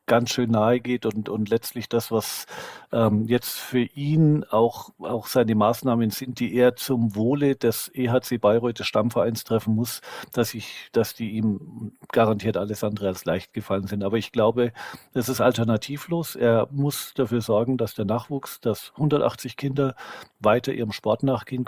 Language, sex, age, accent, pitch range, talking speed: German, male, 50-69, German, 110-125 Hz, 170 wpm